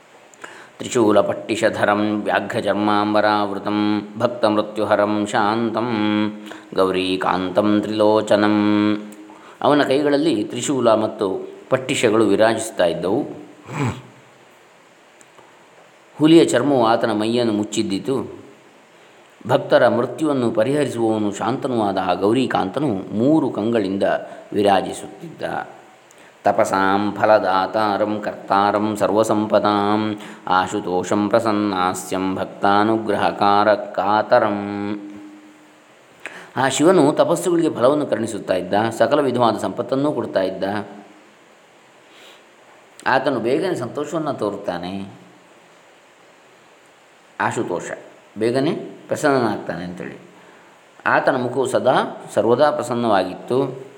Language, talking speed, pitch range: Kannada, 70 wpm, 100-110 Hz